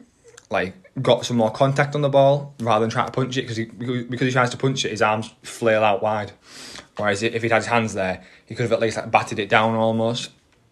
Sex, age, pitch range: male, 20-39, 105-115 Hz